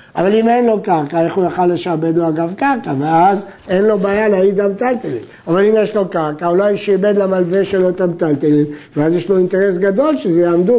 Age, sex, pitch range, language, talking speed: 50-69, male, 170-215 Hz, Hebrew, 200 wpm